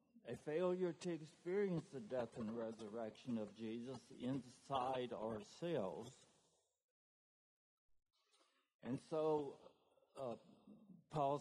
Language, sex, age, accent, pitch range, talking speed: English, male, 60-79, American, 120-160 Hz, 85 wpm